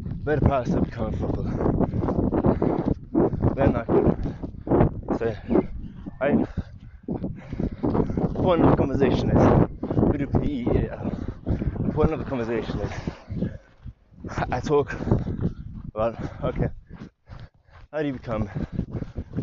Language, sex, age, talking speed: English, male, 20-39, 95 wpm